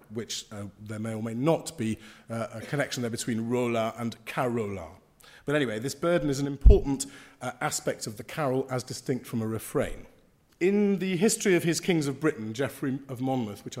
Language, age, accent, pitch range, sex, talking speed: English, 40-59, British, 120-155 Hz, male, 195 wpm